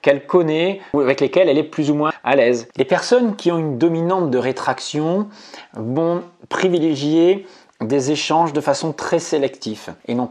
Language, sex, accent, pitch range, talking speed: English, male, French, 125-155 Hz, 175 wpm